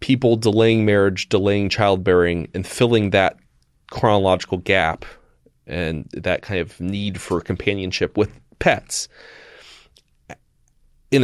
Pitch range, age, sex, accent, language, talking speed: 95-125 Hz, 30-49, male, American, English, 105 wpm